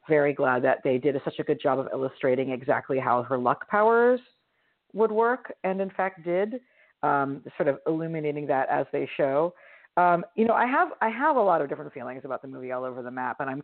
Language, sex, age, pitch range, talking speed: English, female, 40-59, 135-195 Hz, 225 wpm